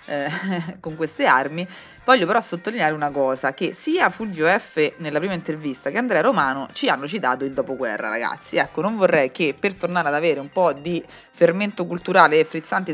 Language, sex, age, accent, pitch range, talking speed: Italian, female, 20-39, native, 145-180 Hz, 180 wpm